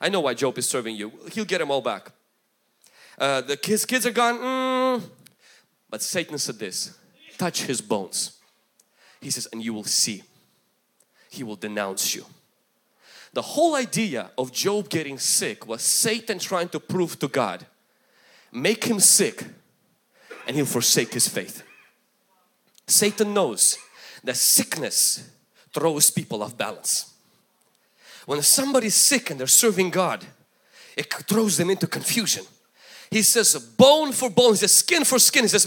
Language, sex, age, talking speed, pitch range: English, male, 30-49, 150 wpm, 145-240 Hz